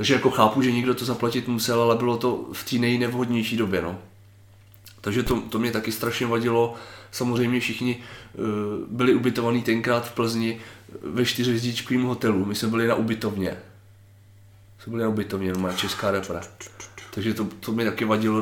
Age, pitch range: 30-49, 105-120 Hz